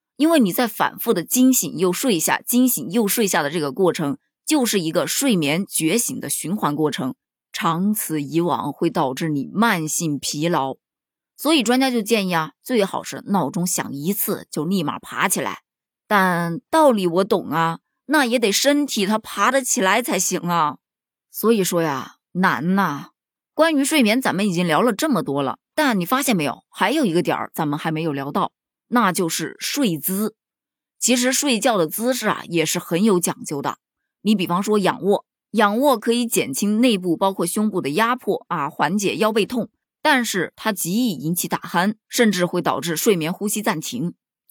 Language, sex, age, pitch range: Chinese, female, 20-39, 170-235 Hz